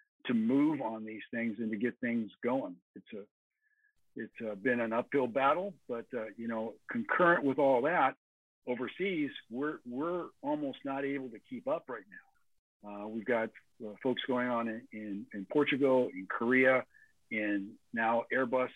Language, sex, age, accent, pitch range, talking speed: English, male, 50-69, American, 115-145 Hz, 165 wpm